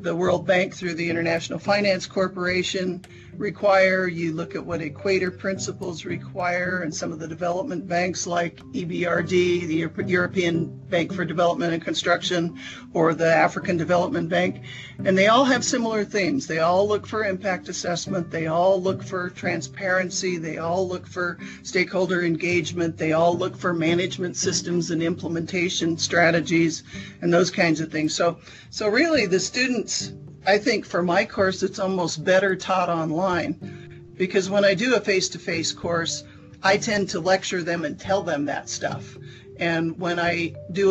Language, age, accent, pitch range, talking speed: English, 50-69, American, 165-190 Hz, 160 wpm